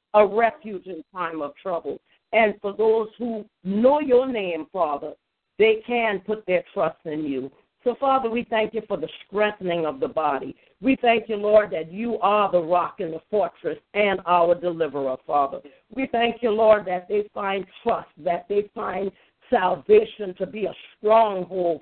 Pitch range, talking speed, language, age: 180-220 Hz, 175 wpm, English, 50-69